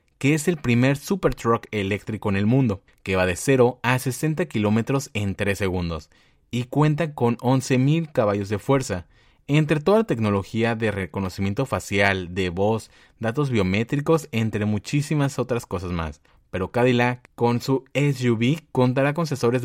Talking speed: 155 wpm